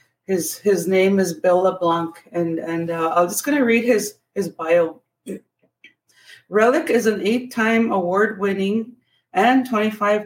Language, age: English, 30-49